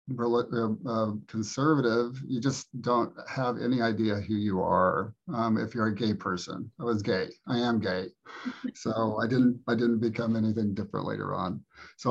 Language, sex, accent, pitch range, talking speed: English, male, American, 110-125 Hz, 170 wpm